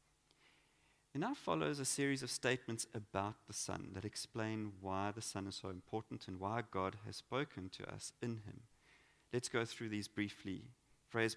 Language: English